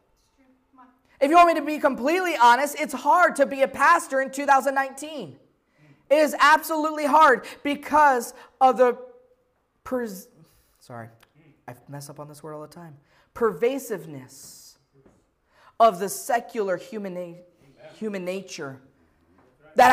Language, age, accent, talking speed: English, 20-39, American, 130 wpm